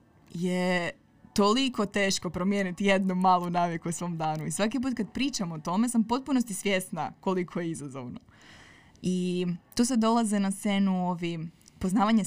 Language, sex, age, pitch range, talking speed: Croatian, female, 20-39, 170-205 Hz, 150 wpm